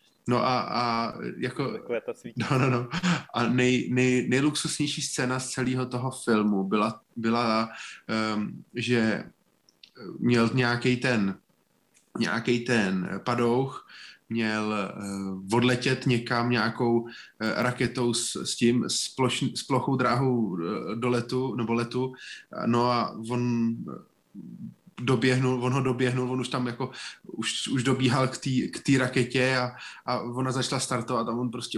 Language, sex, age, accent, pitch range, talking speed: Czech, male, 20-39, native, 120-135 Hz, 130 wpm